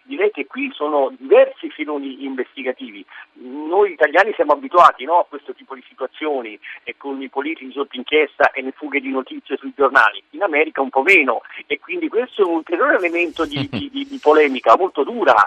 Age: 50-69